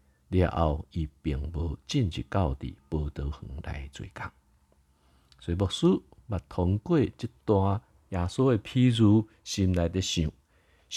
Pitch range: 75-95 Hz